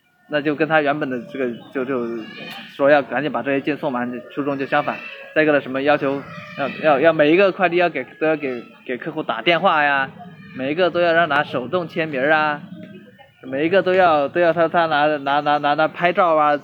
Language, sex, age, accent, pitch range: Chinese, male, 20-39, native, 145-175 Hz